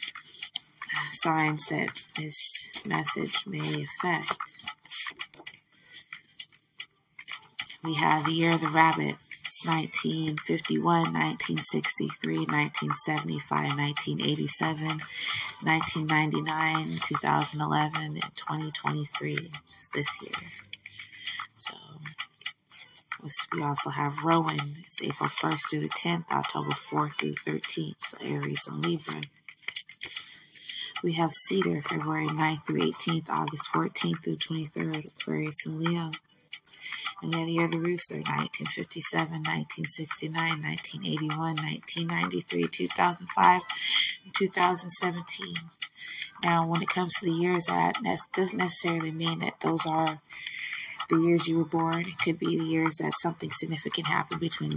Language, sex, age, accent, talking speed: English, female, 20-39, American, 110 wpm